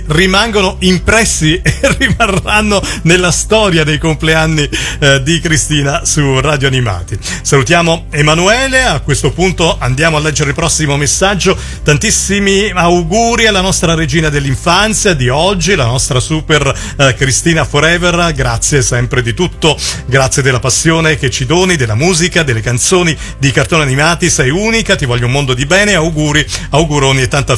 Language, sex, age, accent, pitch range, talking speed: Italian, male, 40-59, native, 135-175 Hz, 150 wpm